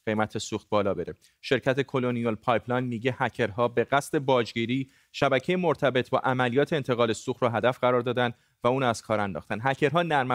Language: Persian